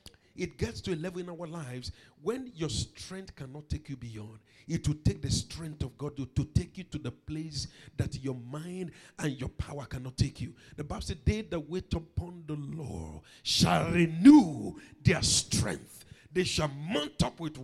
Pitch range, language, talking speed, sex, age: 120-190 Hz, English, 190 wpm, male, 50-69